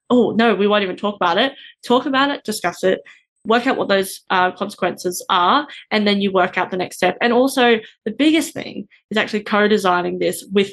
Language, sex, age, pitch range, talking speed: English, female, 20-39, 190-240 Hz, 215 wpm